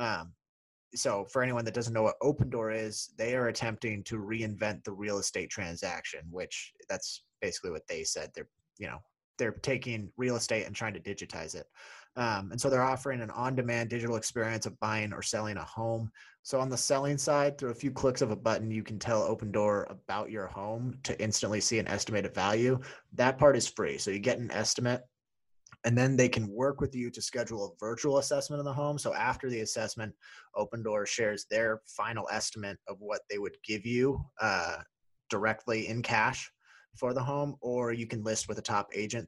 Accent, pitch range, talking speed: American, 110-130 Hz, 205 wpm